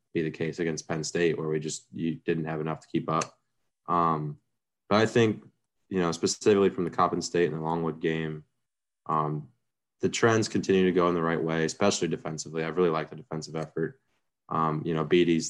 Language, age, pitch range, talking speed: English, 20-39, 80-85 Hz, 205 wpm